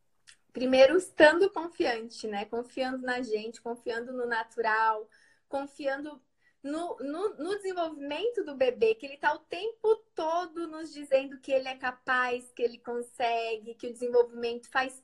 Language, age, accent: Portuguese, 20-39, Brazilian